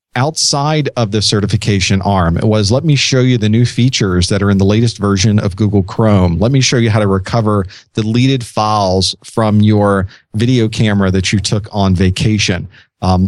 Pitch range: 100-120 Hz